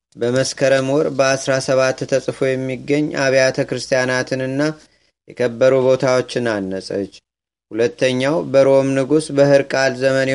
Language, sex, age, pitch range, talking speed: Amharic, male, 30-49, 125-135 Hz, 85 wpm